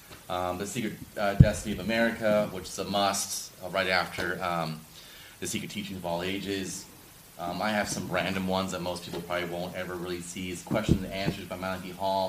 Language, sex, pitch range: English, male, 90-105 Hz